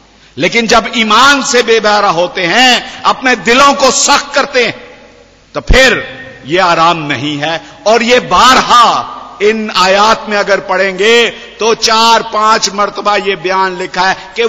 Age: 50-69